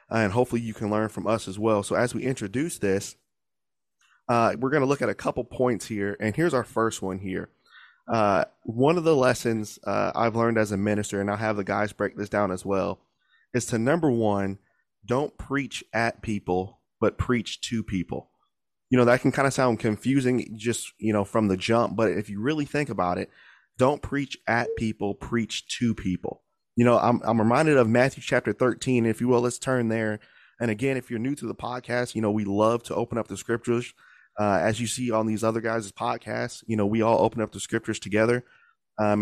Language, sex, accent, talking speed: English, male, American, 220 wpm